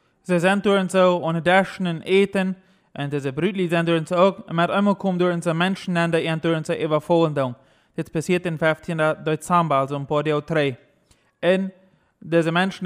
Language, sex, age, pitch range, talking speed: German, male, 20-39, 155-180 Hz, 185 wpm